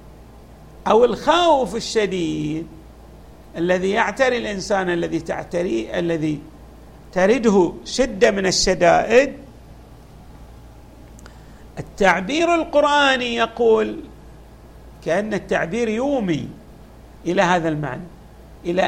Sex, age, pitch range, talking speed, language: male, 50-69, 160-240 Hz, 75 wpm, Arabic